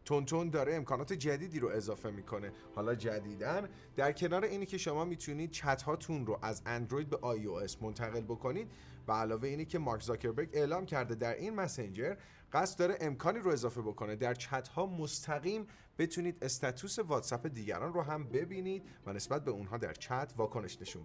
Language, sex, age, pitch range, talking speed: Persian, male, 30-49, 115-170 Hz, 170 wpm